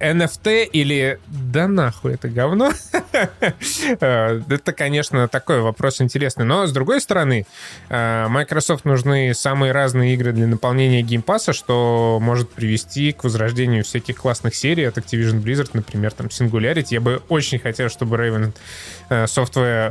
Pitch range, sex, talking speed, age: 110-135 Hz, male, 135 wpm, 20-39